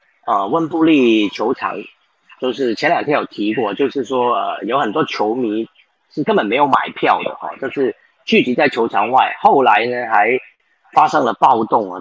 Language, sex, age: Chinese, male, 40-59